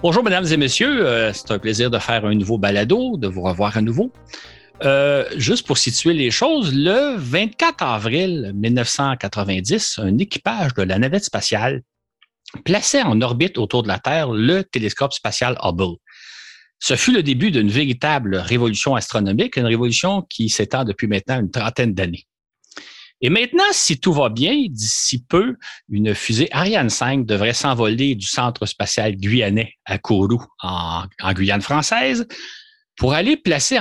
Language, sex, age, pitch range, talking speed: French, male, 50-69, 110-165 Hz, 160 wpm